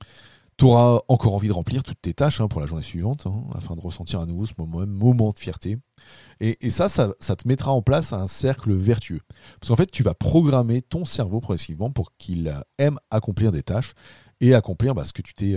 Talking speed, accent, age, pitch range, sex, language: 225 wpm, French, 40-59, 95-125 Hz, male, French